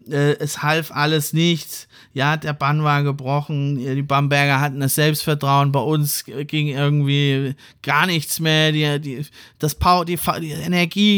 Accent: German